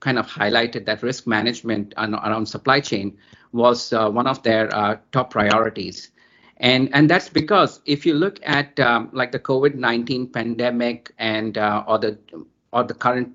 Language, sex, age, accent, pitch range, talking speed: English, male, 50-69, Indian, 110-130 Hz, 170 wpm